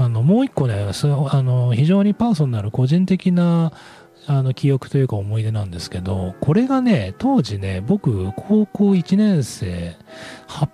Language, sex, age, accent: Japanese, male, 40-59, native